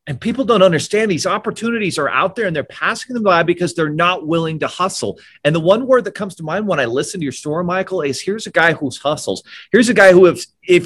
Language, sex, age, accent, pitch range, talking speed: English, male, 30-49, American, 145-195 Hz, 260 wpm